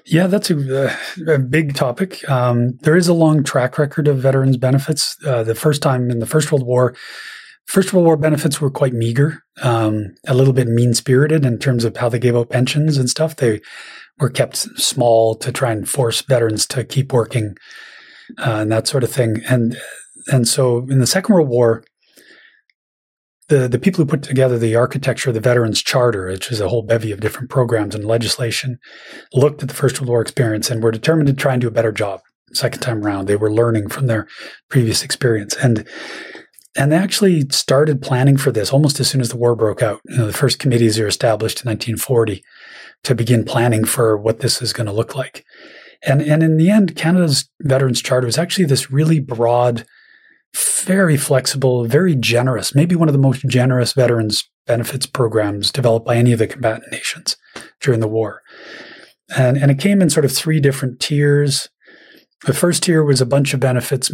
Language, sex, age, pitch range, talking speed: English, male, 30-49, 115-140 Hz, 195 wpm